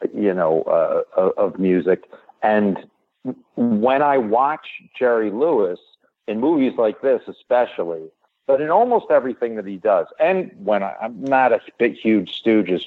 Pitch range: 100-145 Hz